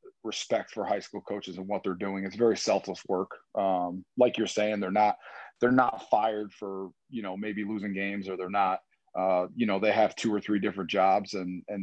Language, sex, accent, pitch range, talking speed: English, male, American, 100-115 Hz, 220 wpm